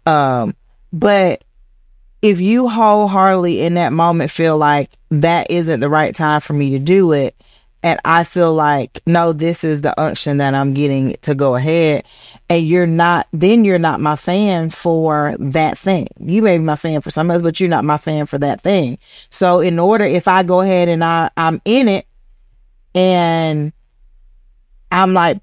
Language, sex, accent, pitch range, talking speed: English, female, American, 150-190 Hz, 180 wpm